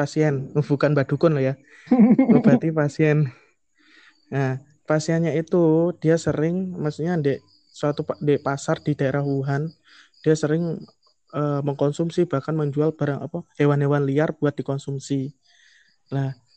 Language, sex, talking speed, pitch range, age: Indonesian, male, 120 wpm, 145-170 Hz, 20-39